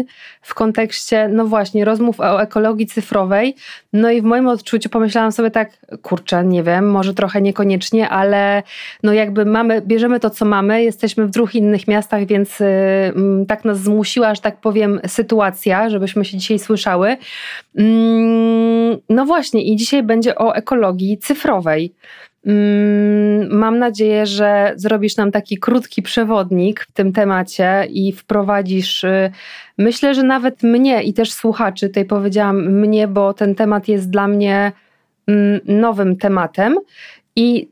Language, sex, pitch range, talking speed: Polish, female, 200-230 Hz, 140 wpm